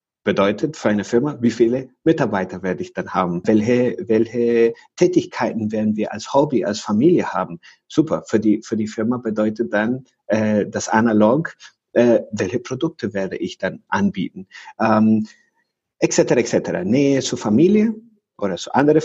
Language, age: German, 50-69